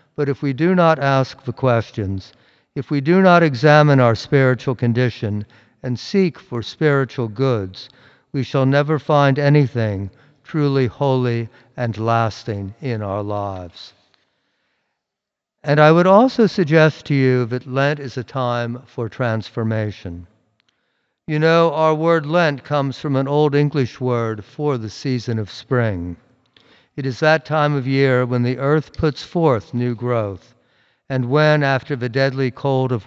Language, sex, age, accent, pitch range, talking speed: English, male, 60-79, American, 115-145 Hz, 150 wpm